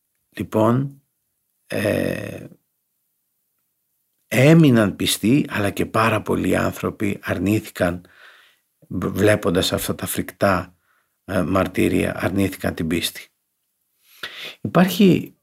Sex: male